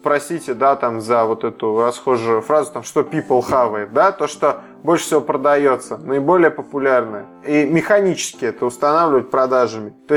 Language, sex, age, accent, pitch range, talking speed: Russian, male, 20-39, native, 130-155 Hz, 160 wpm